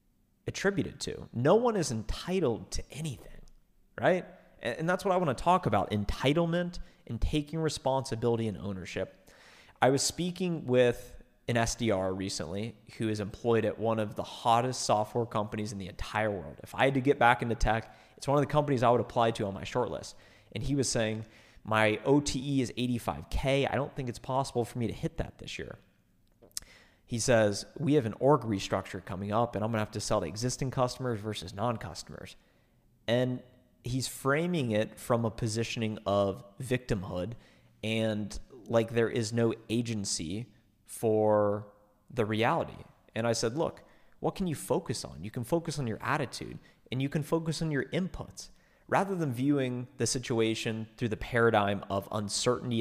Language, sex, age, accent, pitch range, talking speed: English, male, 30-49, American, 105-130 Hz, 175 wpm